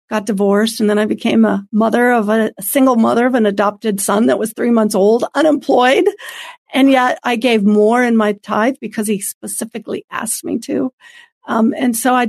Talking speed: 200 wpm